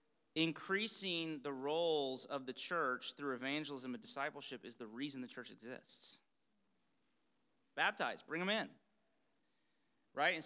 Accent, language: American, English